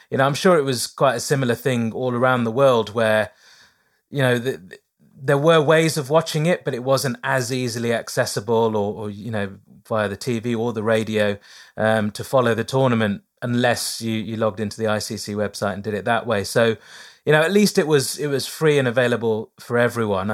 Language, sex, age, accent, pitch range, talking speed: English, male, 30-49, British, 115-135 Hz, 215 wpm